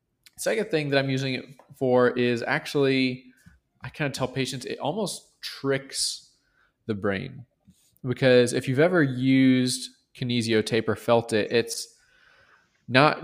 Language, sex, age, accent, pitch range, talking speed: English, male, 20-39, American, 110-135 Hz, 140 wpm